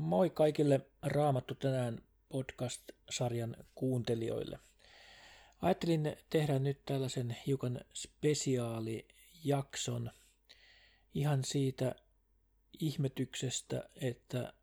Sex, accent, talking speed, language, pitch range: male, native, 65 wpm, Finnish, 125-145 Hz